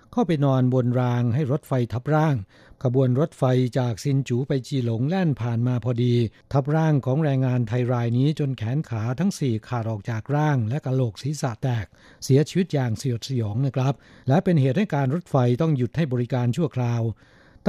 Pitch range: 120-145 Hz